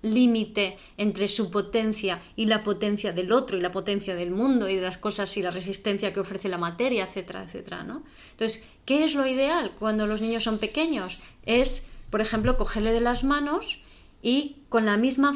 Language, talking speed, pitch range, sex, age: Spanish, 190 wpm, 195-240 Hz, female, 20-39